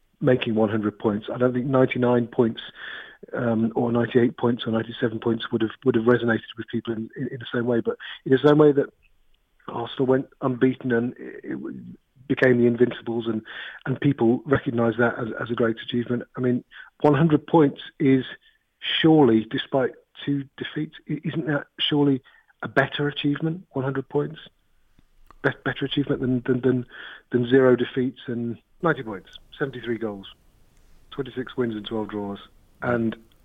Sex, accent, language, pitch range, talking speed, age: male, British, English, 115-140 Hz, 160 wpm, 40-59